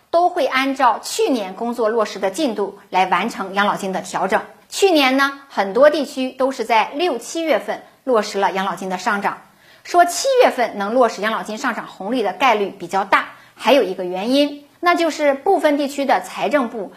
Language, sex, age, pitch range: Chinese, female, 50-69, 205-295 Hz